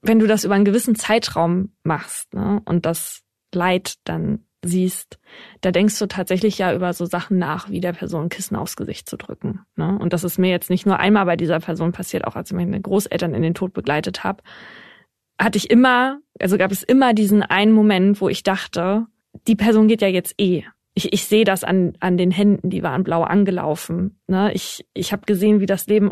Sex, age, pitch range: female, 20-39, 175-205 Hz